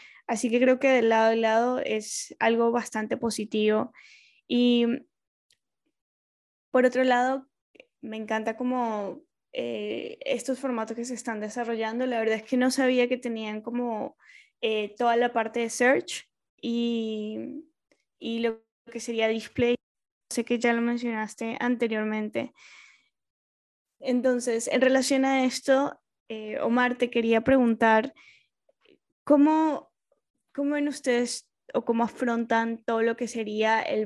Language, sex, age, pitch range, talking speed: English, female, 10-29, 220-250 Hz, 130 wpm